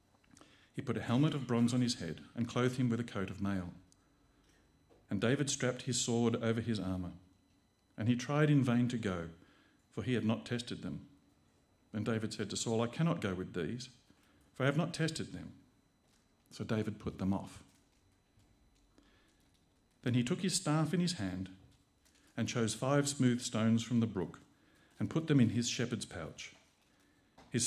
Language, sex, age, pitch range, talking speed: English, male, 50-69, 95-125 Hz, 180 wpm